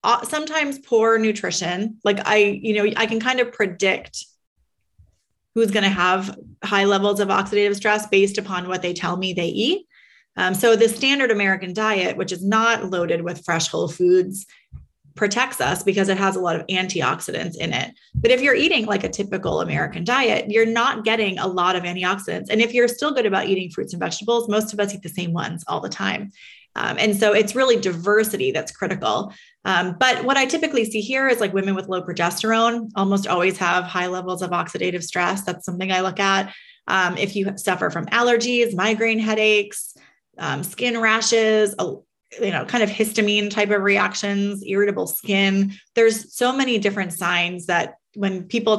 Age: 30-49